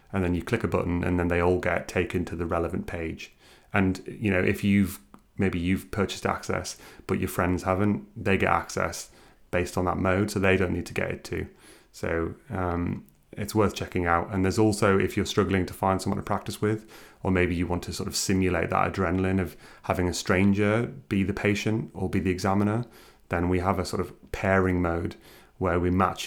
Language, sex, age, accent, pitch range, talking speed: English, male, 30-49, British, 85-95 Hz, 215 wpm